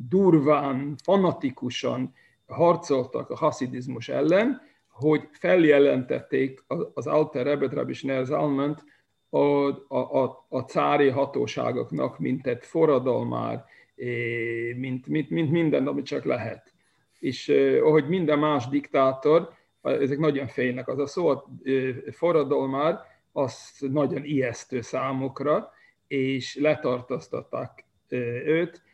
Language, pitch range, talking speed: Hungarian, 130-160 Hz, 100 wpm